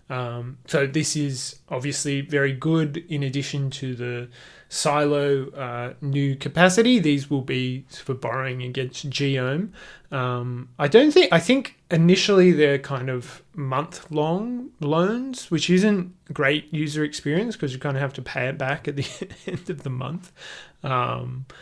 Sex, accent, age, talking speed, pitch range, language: male, Australian, 20-39, 155 wpm, 130-155 Hz, English